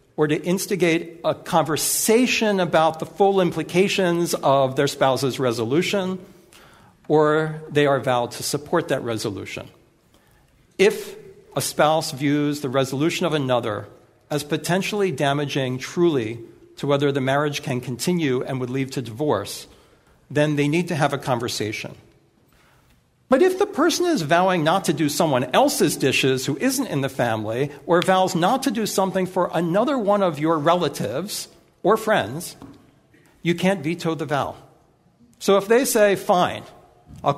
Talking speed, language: 150 wpm, English